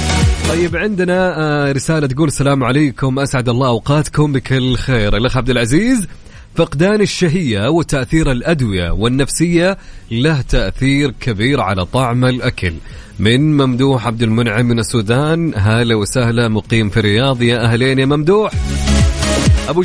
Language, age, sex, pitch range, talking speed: Arabic, 30-49, male, 115-160 Hz, 125 wpm